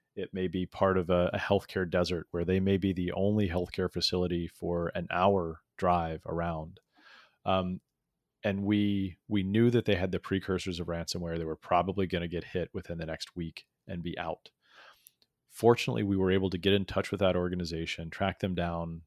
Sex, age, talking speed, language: male, 30-49, 190 wpm, English